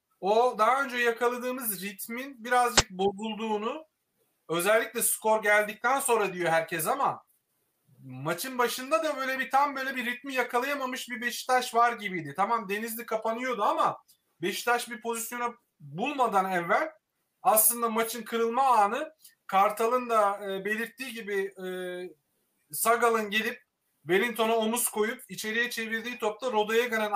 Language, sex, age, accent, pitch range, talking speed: Turkish, male, 40-59, native, 195-240 Hz, 125 wpm